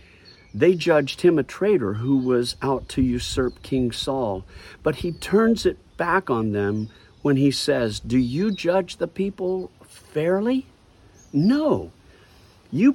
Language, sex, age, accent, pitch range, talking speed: English, male, 50-69, American, 95-155 Hz, 140 wpm